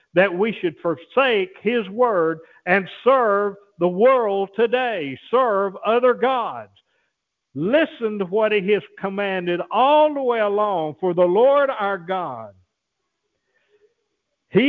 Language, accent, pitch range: English, American, 150-215 Hz